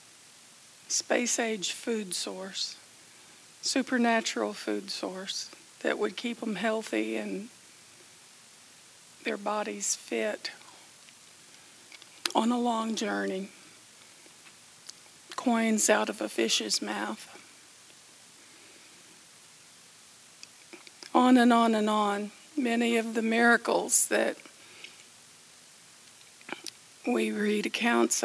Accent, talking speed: American, 80 wpm